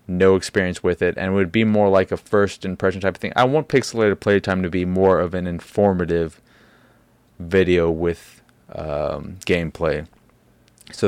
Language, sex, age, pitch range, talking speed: English, male, 20-39, 90-110 Hz, 170 wpm